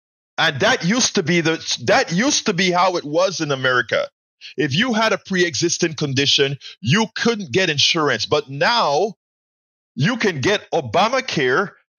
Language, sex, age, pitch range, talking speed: English, male, 50-69, 155-205 Hz, 155 wpm